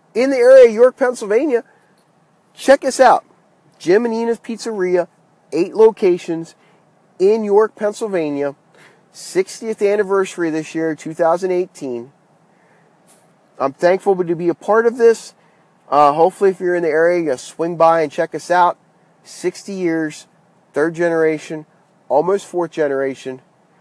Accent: American